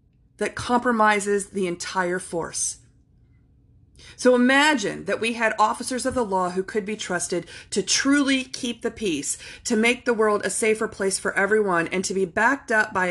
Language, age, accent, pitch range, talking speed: English, 40-59, American, 180-230 Hz, 175 wpm